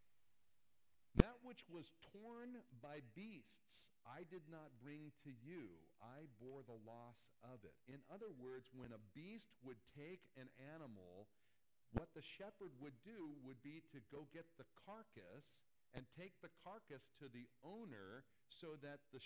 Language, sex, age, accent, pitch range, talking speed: English, male, 50-69, American, 130-195 Hz, 155 wpm